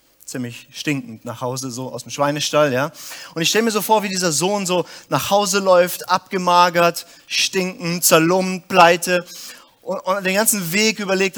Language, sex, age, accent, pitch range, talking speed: German, male, 30-49, German, 165-215 Hz, 170 wpm